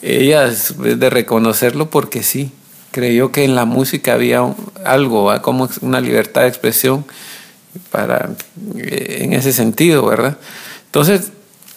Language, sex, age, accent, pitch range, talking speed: Spanish, male, 50-69, Mexican, 125-170 Hz, 120 wpm